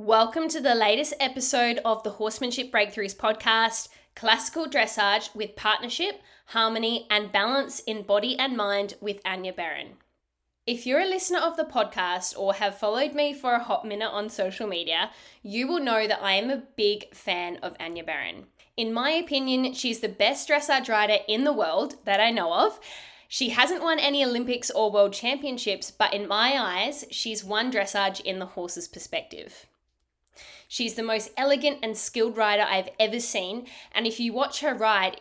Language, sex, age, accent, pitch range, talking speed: English, female, 10-29, Australian, 200-250 Hz, 175 wpm